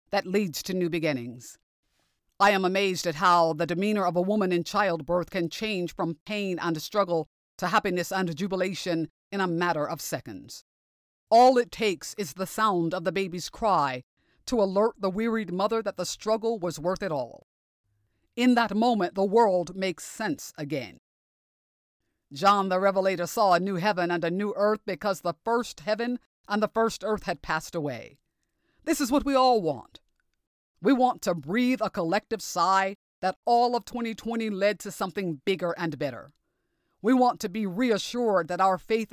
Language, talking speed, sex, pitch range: English, 175 wpm, female, 170-215 Hz